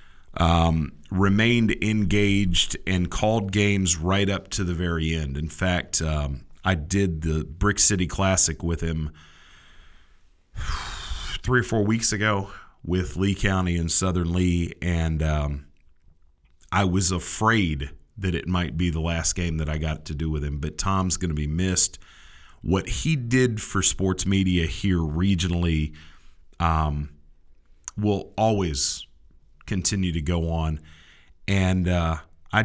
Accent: American